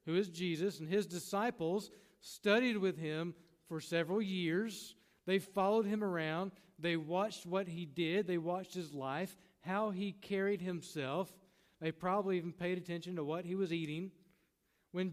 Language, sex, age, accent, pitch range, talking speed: English, male, 50-69, American, 160-195 Hz, 155 wpm